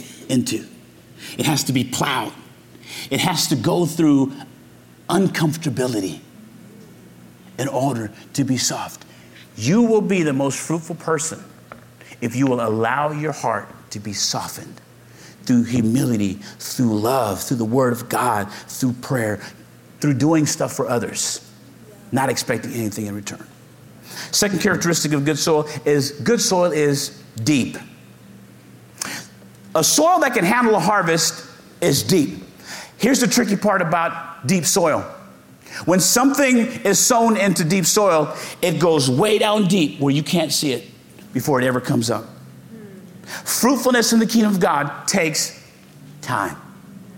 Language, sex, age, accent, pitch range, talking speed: English, male, 50-69, American, 130-195 Hz, 140 wpm